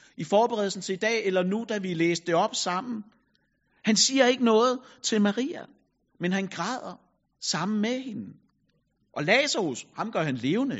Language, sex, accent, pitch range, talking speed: Danish, male, native, 195-240 Hz, 170 wpm